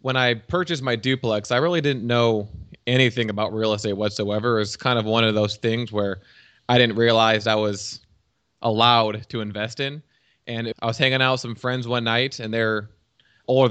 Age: 20-39